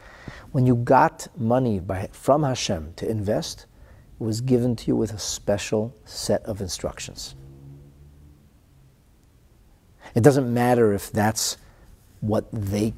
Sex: male